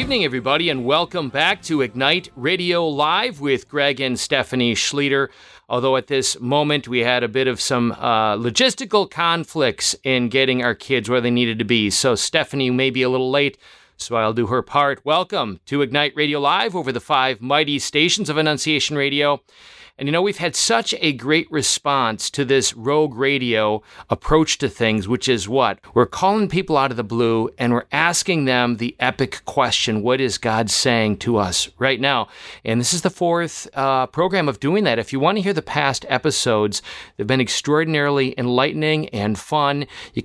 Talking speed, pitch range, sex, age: 190 wpm, 125-150 Hz, male, 40-59